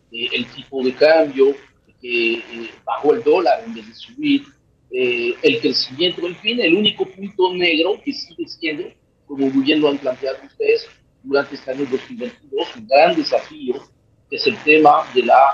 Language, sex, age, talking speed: Spanish, male, 40-59, 165 wpm